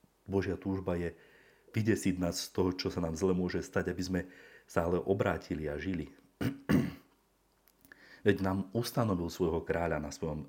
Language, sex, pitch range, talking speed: Slovak, male, 85-95 Hz, 155 wpm